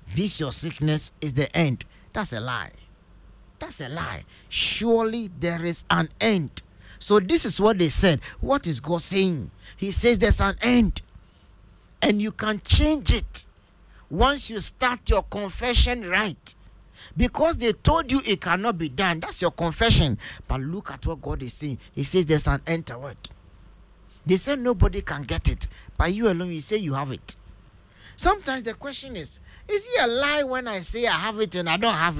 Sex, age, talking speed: male, 50-69, 185 wpm